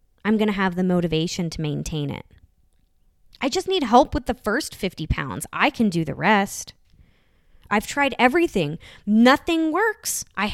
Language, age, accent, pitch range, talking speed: English, 20-39, American, 195-290 Hz, 165 wpm